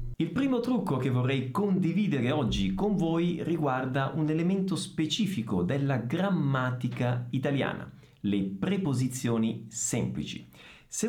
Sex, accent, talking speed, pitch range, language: male, native, 110 wpm, 115-195 Hz, Italian